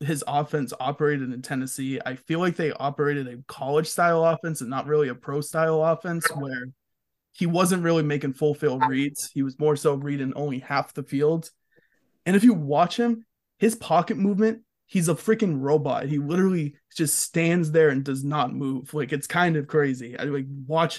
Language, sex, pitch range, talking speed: English, male, 140-170 Hz, 190 wpm